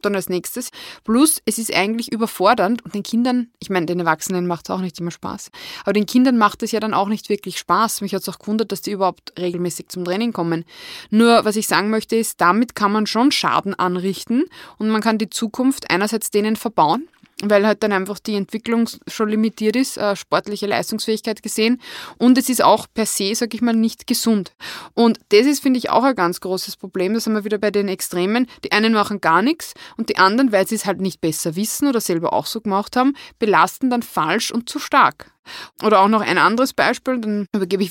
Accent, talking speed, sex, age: German, 225 wpm, female, 20-39